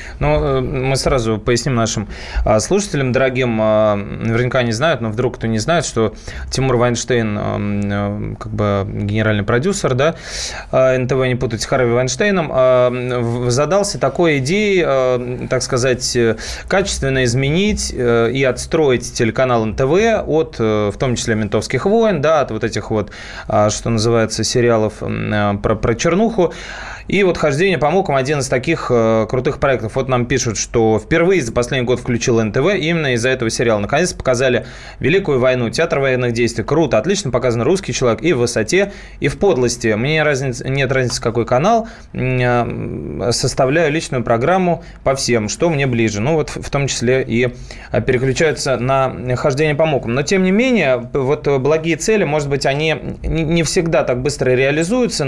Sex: male